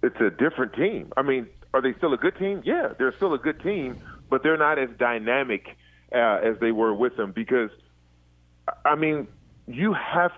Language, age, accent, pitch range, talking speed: English, 40-59, American, 115-165 Hz, 195 wpm